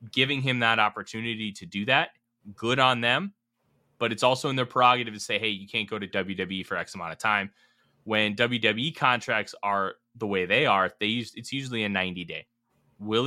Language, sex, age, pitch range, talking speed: English, male, 20-39, 100-130 Hz, 205 wpm